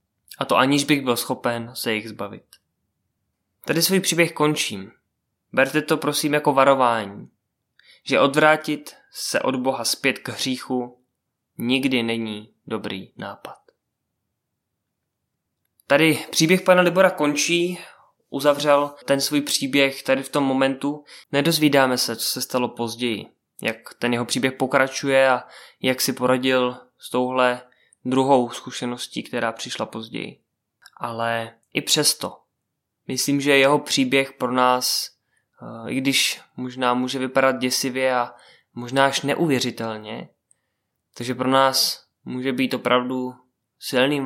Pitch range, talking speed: 120-140 Hz, 125 wpm